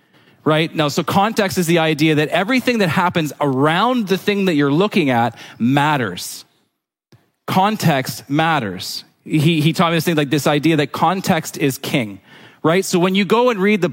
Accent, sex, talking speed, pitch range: American, male, 180 wpm, 140-190 Hz